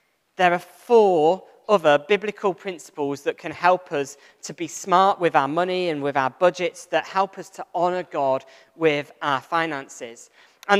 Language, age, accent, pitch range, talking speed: English, 40-59, British, 160-220 Hz, 165 wpm